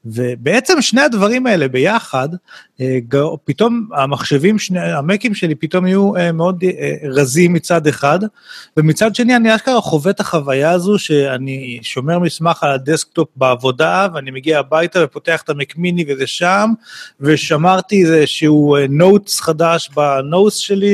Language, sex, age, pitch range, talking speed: Hebrew, male, 30-49, 145-195 Hz, 125 wpm